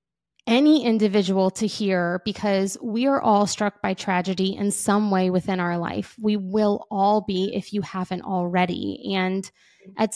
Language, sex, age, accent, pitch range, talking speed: English, female, 20-39, American, 185-215 Hz, 160 wpm